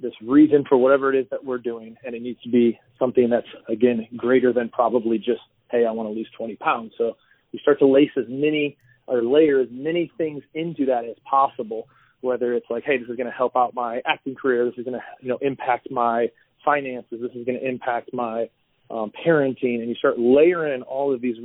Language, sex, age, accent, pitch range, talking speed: English, male, 30-49, American, 120-140 Hz, 225 wpm